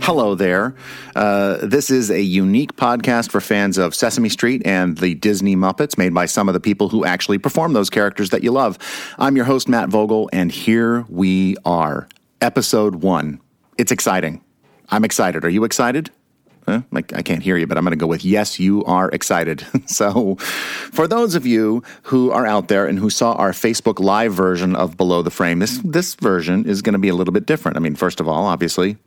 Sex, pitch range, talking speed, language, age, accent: male, 90-110 Hz, 210 wpm, English, 40-59, American